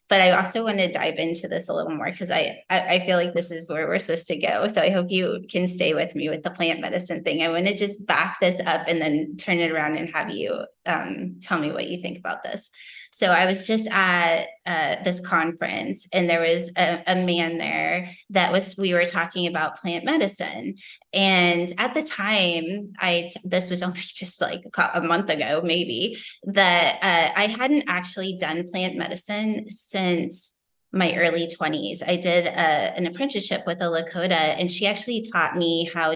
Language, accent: English, American